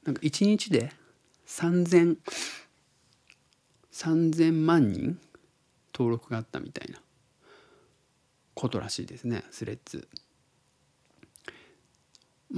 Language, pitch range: Japanese, 110-140 Hz